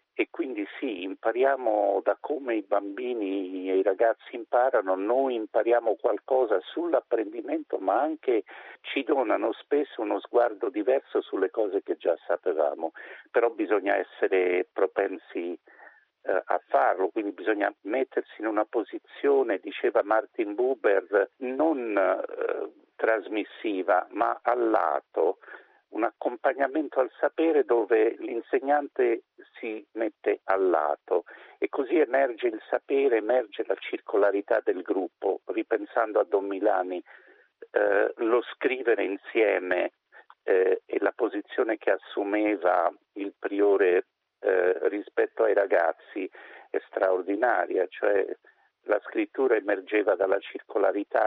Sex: male